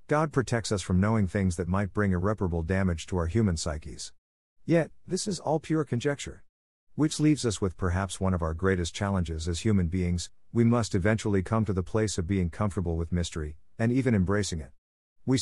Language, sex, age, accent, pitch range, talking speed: English, male, 50-69, American, 85-115 Hz, 200 wpm